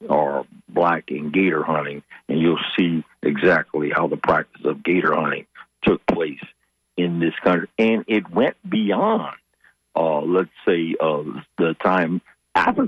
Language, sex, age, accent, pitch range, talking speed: English, male, 60-79, American, 75-95 Hz, 145 wpm